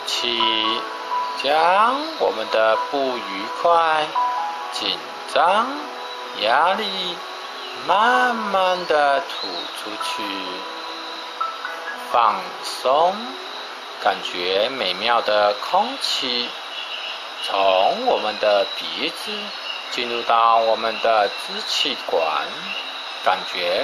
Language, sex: Chinese, male